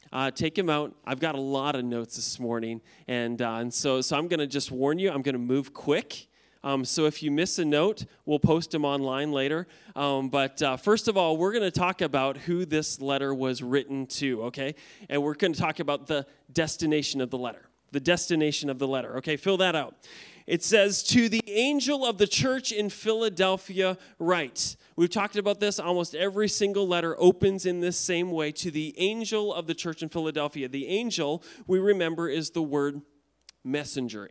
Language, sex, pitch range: English, male, 140-180 Hz